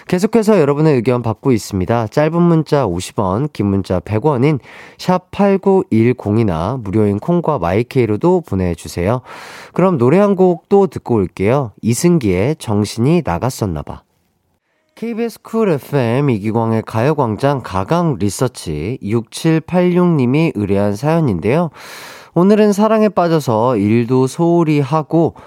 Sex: male